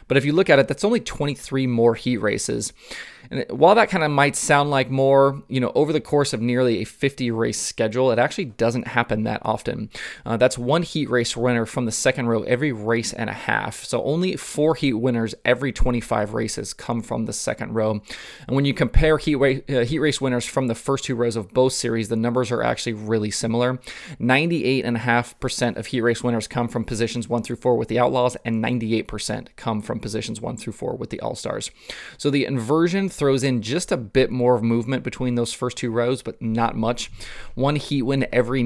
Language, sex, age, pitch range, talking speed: English, male, 20-39, 115-140 Hz, 210 wpm